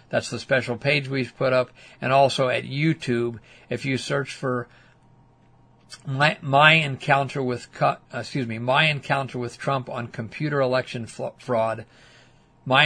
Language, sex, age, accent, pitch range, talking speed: English, male, 50-69, American, 120-145 Hz, 140 wpm